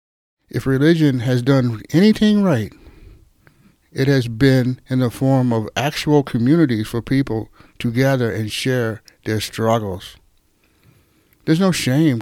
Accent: American